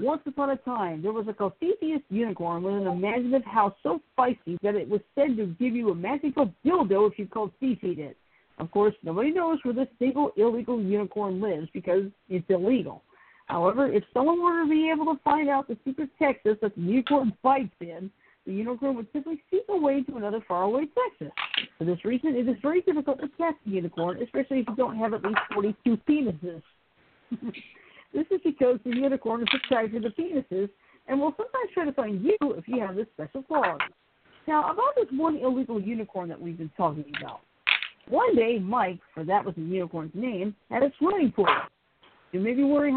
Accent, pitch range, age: American, 200-285 Hz, 50-69